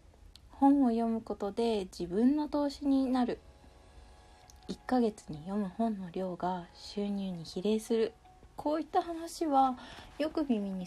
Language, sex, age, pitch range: Japanese, female, 20-39, 180-255 Hz